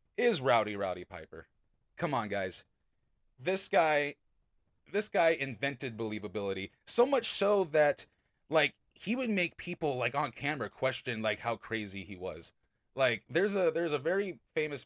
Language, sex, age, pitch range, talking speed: English, male, 30-49, 105-155 Hz, 155 wpm